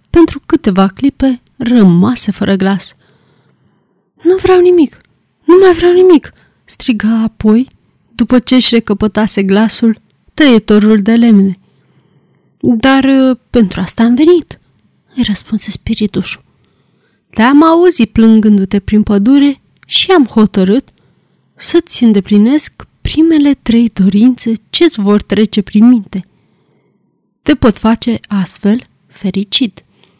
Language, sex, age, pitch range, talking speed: Romanian, female, 20-39, 205-270 Hz, 105 wpm